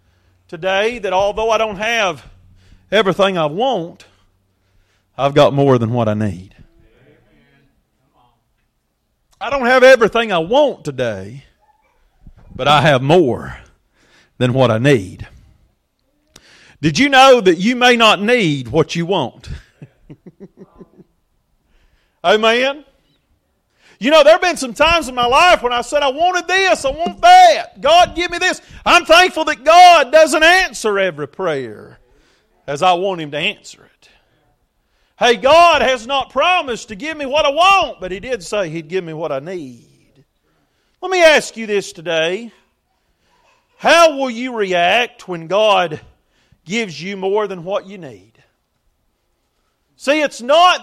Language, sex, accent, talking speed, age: English, male, American, 145 wpm, 40-59